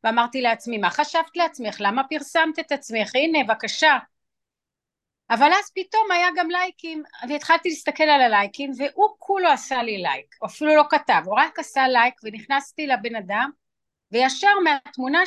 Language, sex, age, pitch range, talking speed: Hebrew, female, 30-49, 230-310 Hz, 155 wpm